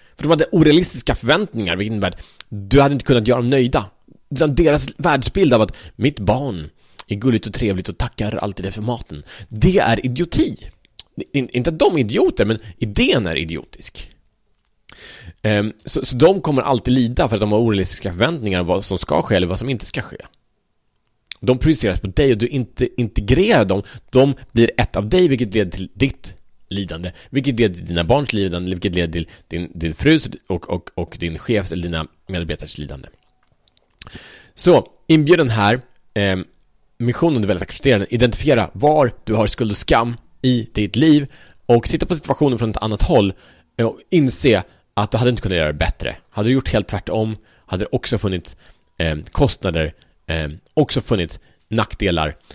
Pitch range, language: 95-130 Hz, Swedish